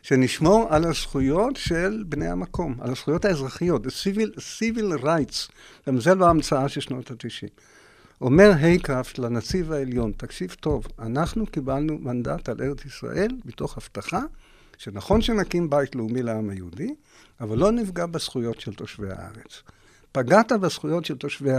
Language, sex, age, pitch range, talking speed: Hebrew, male, 60-79, 115-175 Hz, 140 wpm